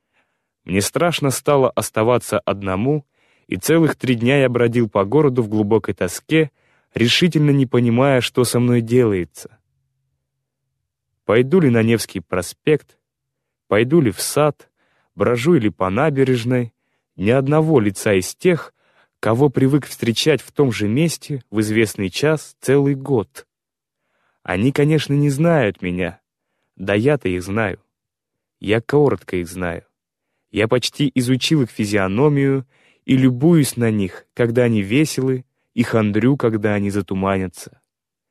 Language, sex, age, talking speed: Russian, male, 20-39, 130 wpm